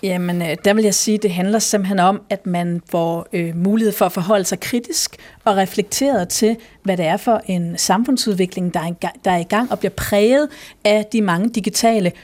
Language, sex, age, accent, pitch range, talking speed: Danish, female, 40-59, native, 190-245 Hz, 190 wpm